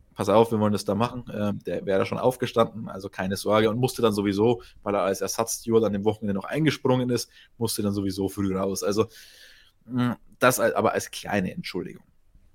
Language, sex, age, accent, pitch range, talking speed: German, male, 20-39, German, 100-125 Hz, 190 wpm